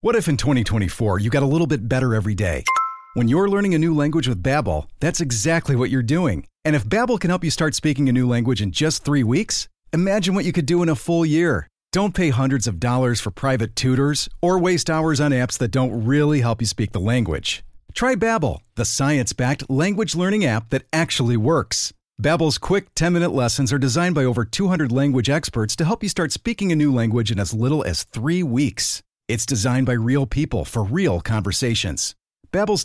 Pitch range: 120-170 Hz